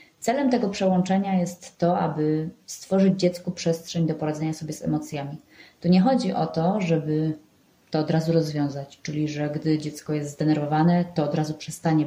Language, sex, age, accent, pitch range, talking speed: Polish, female, 20-39, native, 155-180 Hz, 170 wpm